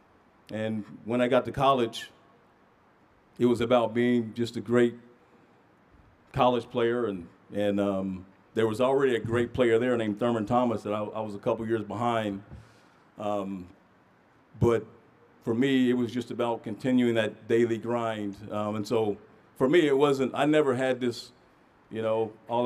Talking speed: 165 wpm